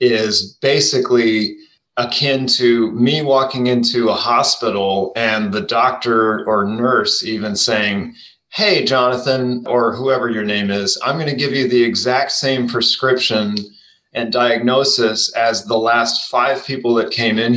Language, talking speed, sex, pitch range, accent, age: English, 145 wpm, male, 110-135 Hz, American, 30-49